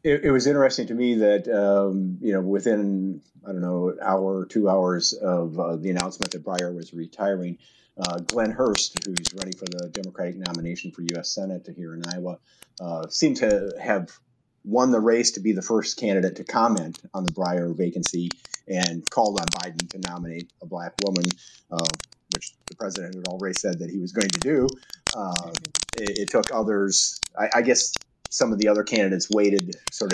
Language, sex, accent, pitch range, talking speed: English, male, American, 90-110 Hz, 195 wpm